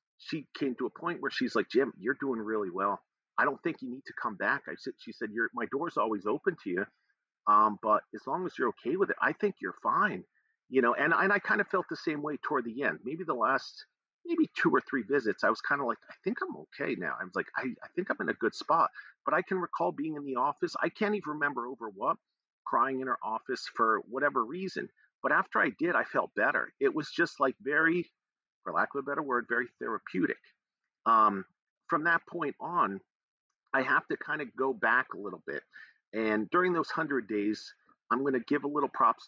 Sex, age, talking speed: male, 50-69, 240 wpm